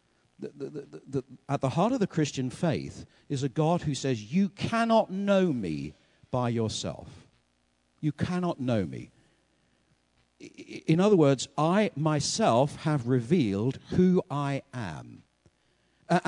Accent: British